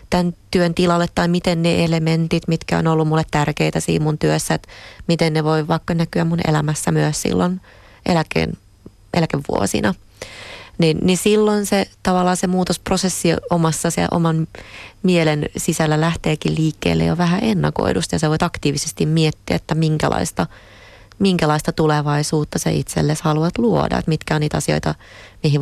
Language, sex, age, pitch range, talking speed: Finnish, female, 30-49, 125-170 Hz, 150 wpm